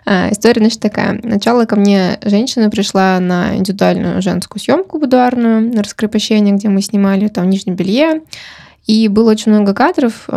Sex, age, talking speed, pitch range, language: female, 20-39, 150 wpm, 195-235 Hz, Russian